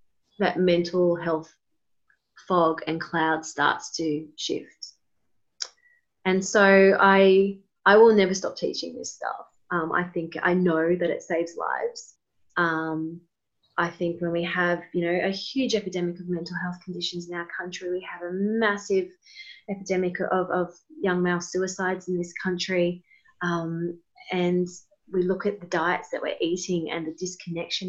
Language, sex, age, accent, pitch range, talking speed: English, female, 20-39, Australian, 170-195 Hz, 155 wpm